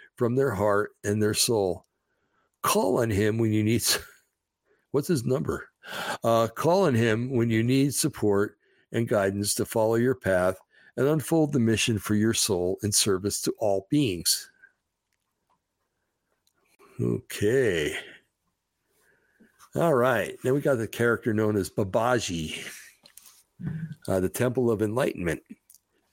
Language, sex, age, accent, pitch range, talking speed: English, male, 60-79, American, 100-120 Hz, 130 wpm